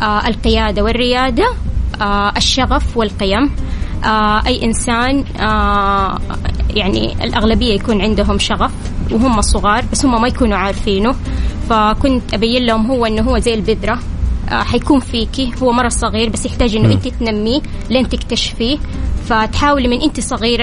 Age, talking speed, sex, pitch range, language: 20-39, 120 wpm, female, 215-250 Hz, Arabic